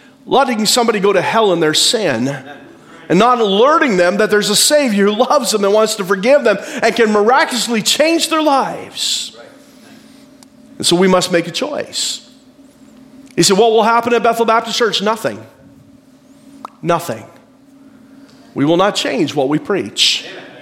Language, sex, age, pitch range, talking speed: English, male, 40-59, 160-265 Hz, 160 wpm